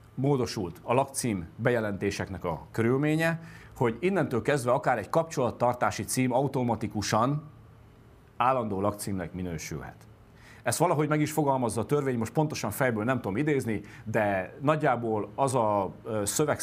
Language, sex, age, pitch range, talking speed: Hungarian, male, 40-59, 105-135 Hz, 125 wpm